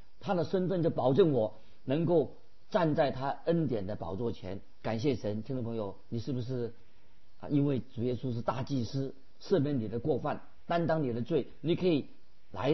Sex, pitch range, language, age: male, 115-150 Hz, Chinese, 50-69